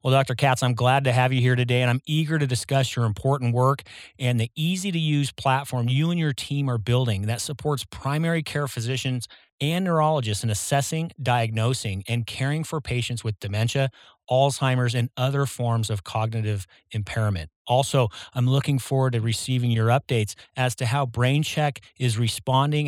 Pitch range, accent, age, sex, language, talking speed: 115-140 Hz, American, 30-49, male, English, 170 wpm